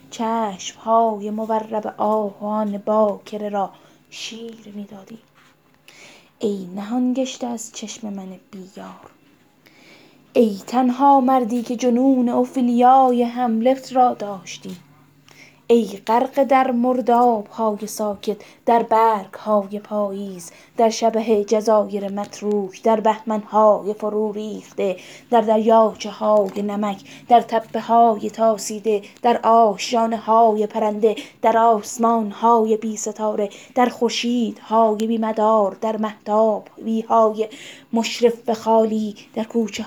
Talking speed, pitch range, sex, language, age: 105 wpm, 200-230 Hz, female, Persian, 20-39